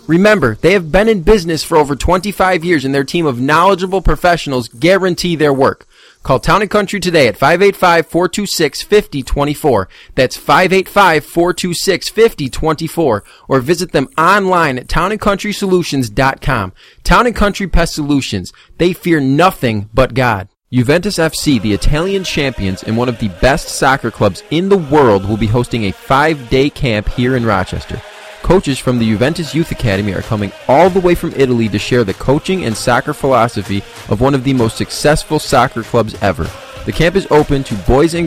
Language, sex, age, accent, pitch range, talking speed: English, male, 30-49, American, 115-170 Hz, 160 wpm